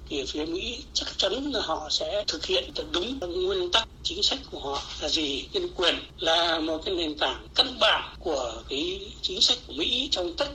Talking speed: 205 wpm